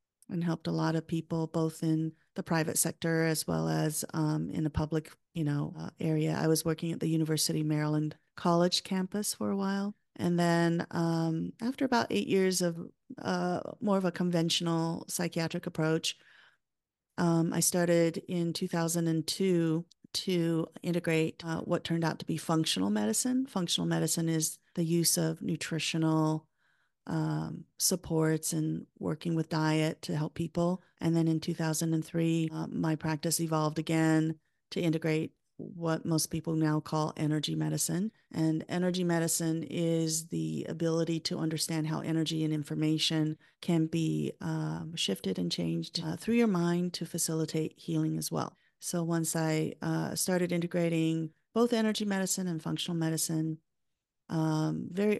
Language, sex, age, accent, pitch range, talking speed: English, female, 40-59, American, 160-170 Hz, 150 wpm